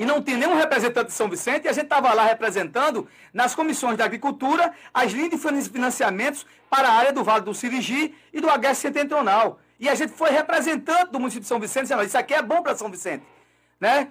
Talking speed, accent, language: 220 wpm, Brazilian, Portuguese